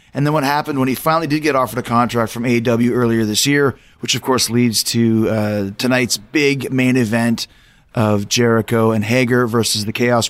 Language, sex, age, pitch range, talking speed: English, male, 30-49, 115-135 Hz, 200 wpm